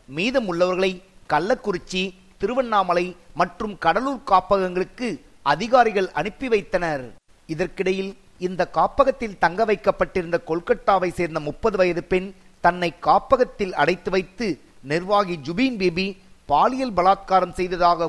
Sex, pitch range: male, 175-205 Hz